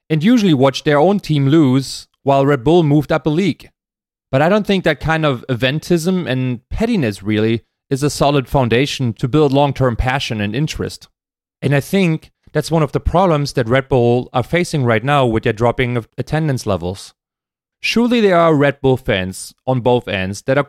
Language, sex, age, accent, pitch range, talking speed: English, male, 30-49, German, 125-160 Hz, 190 wpm